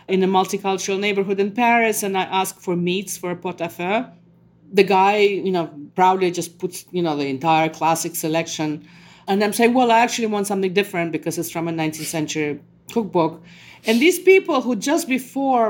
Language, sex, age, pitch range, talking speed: English, female, 40-59, 175-225 Hz, 185 wpm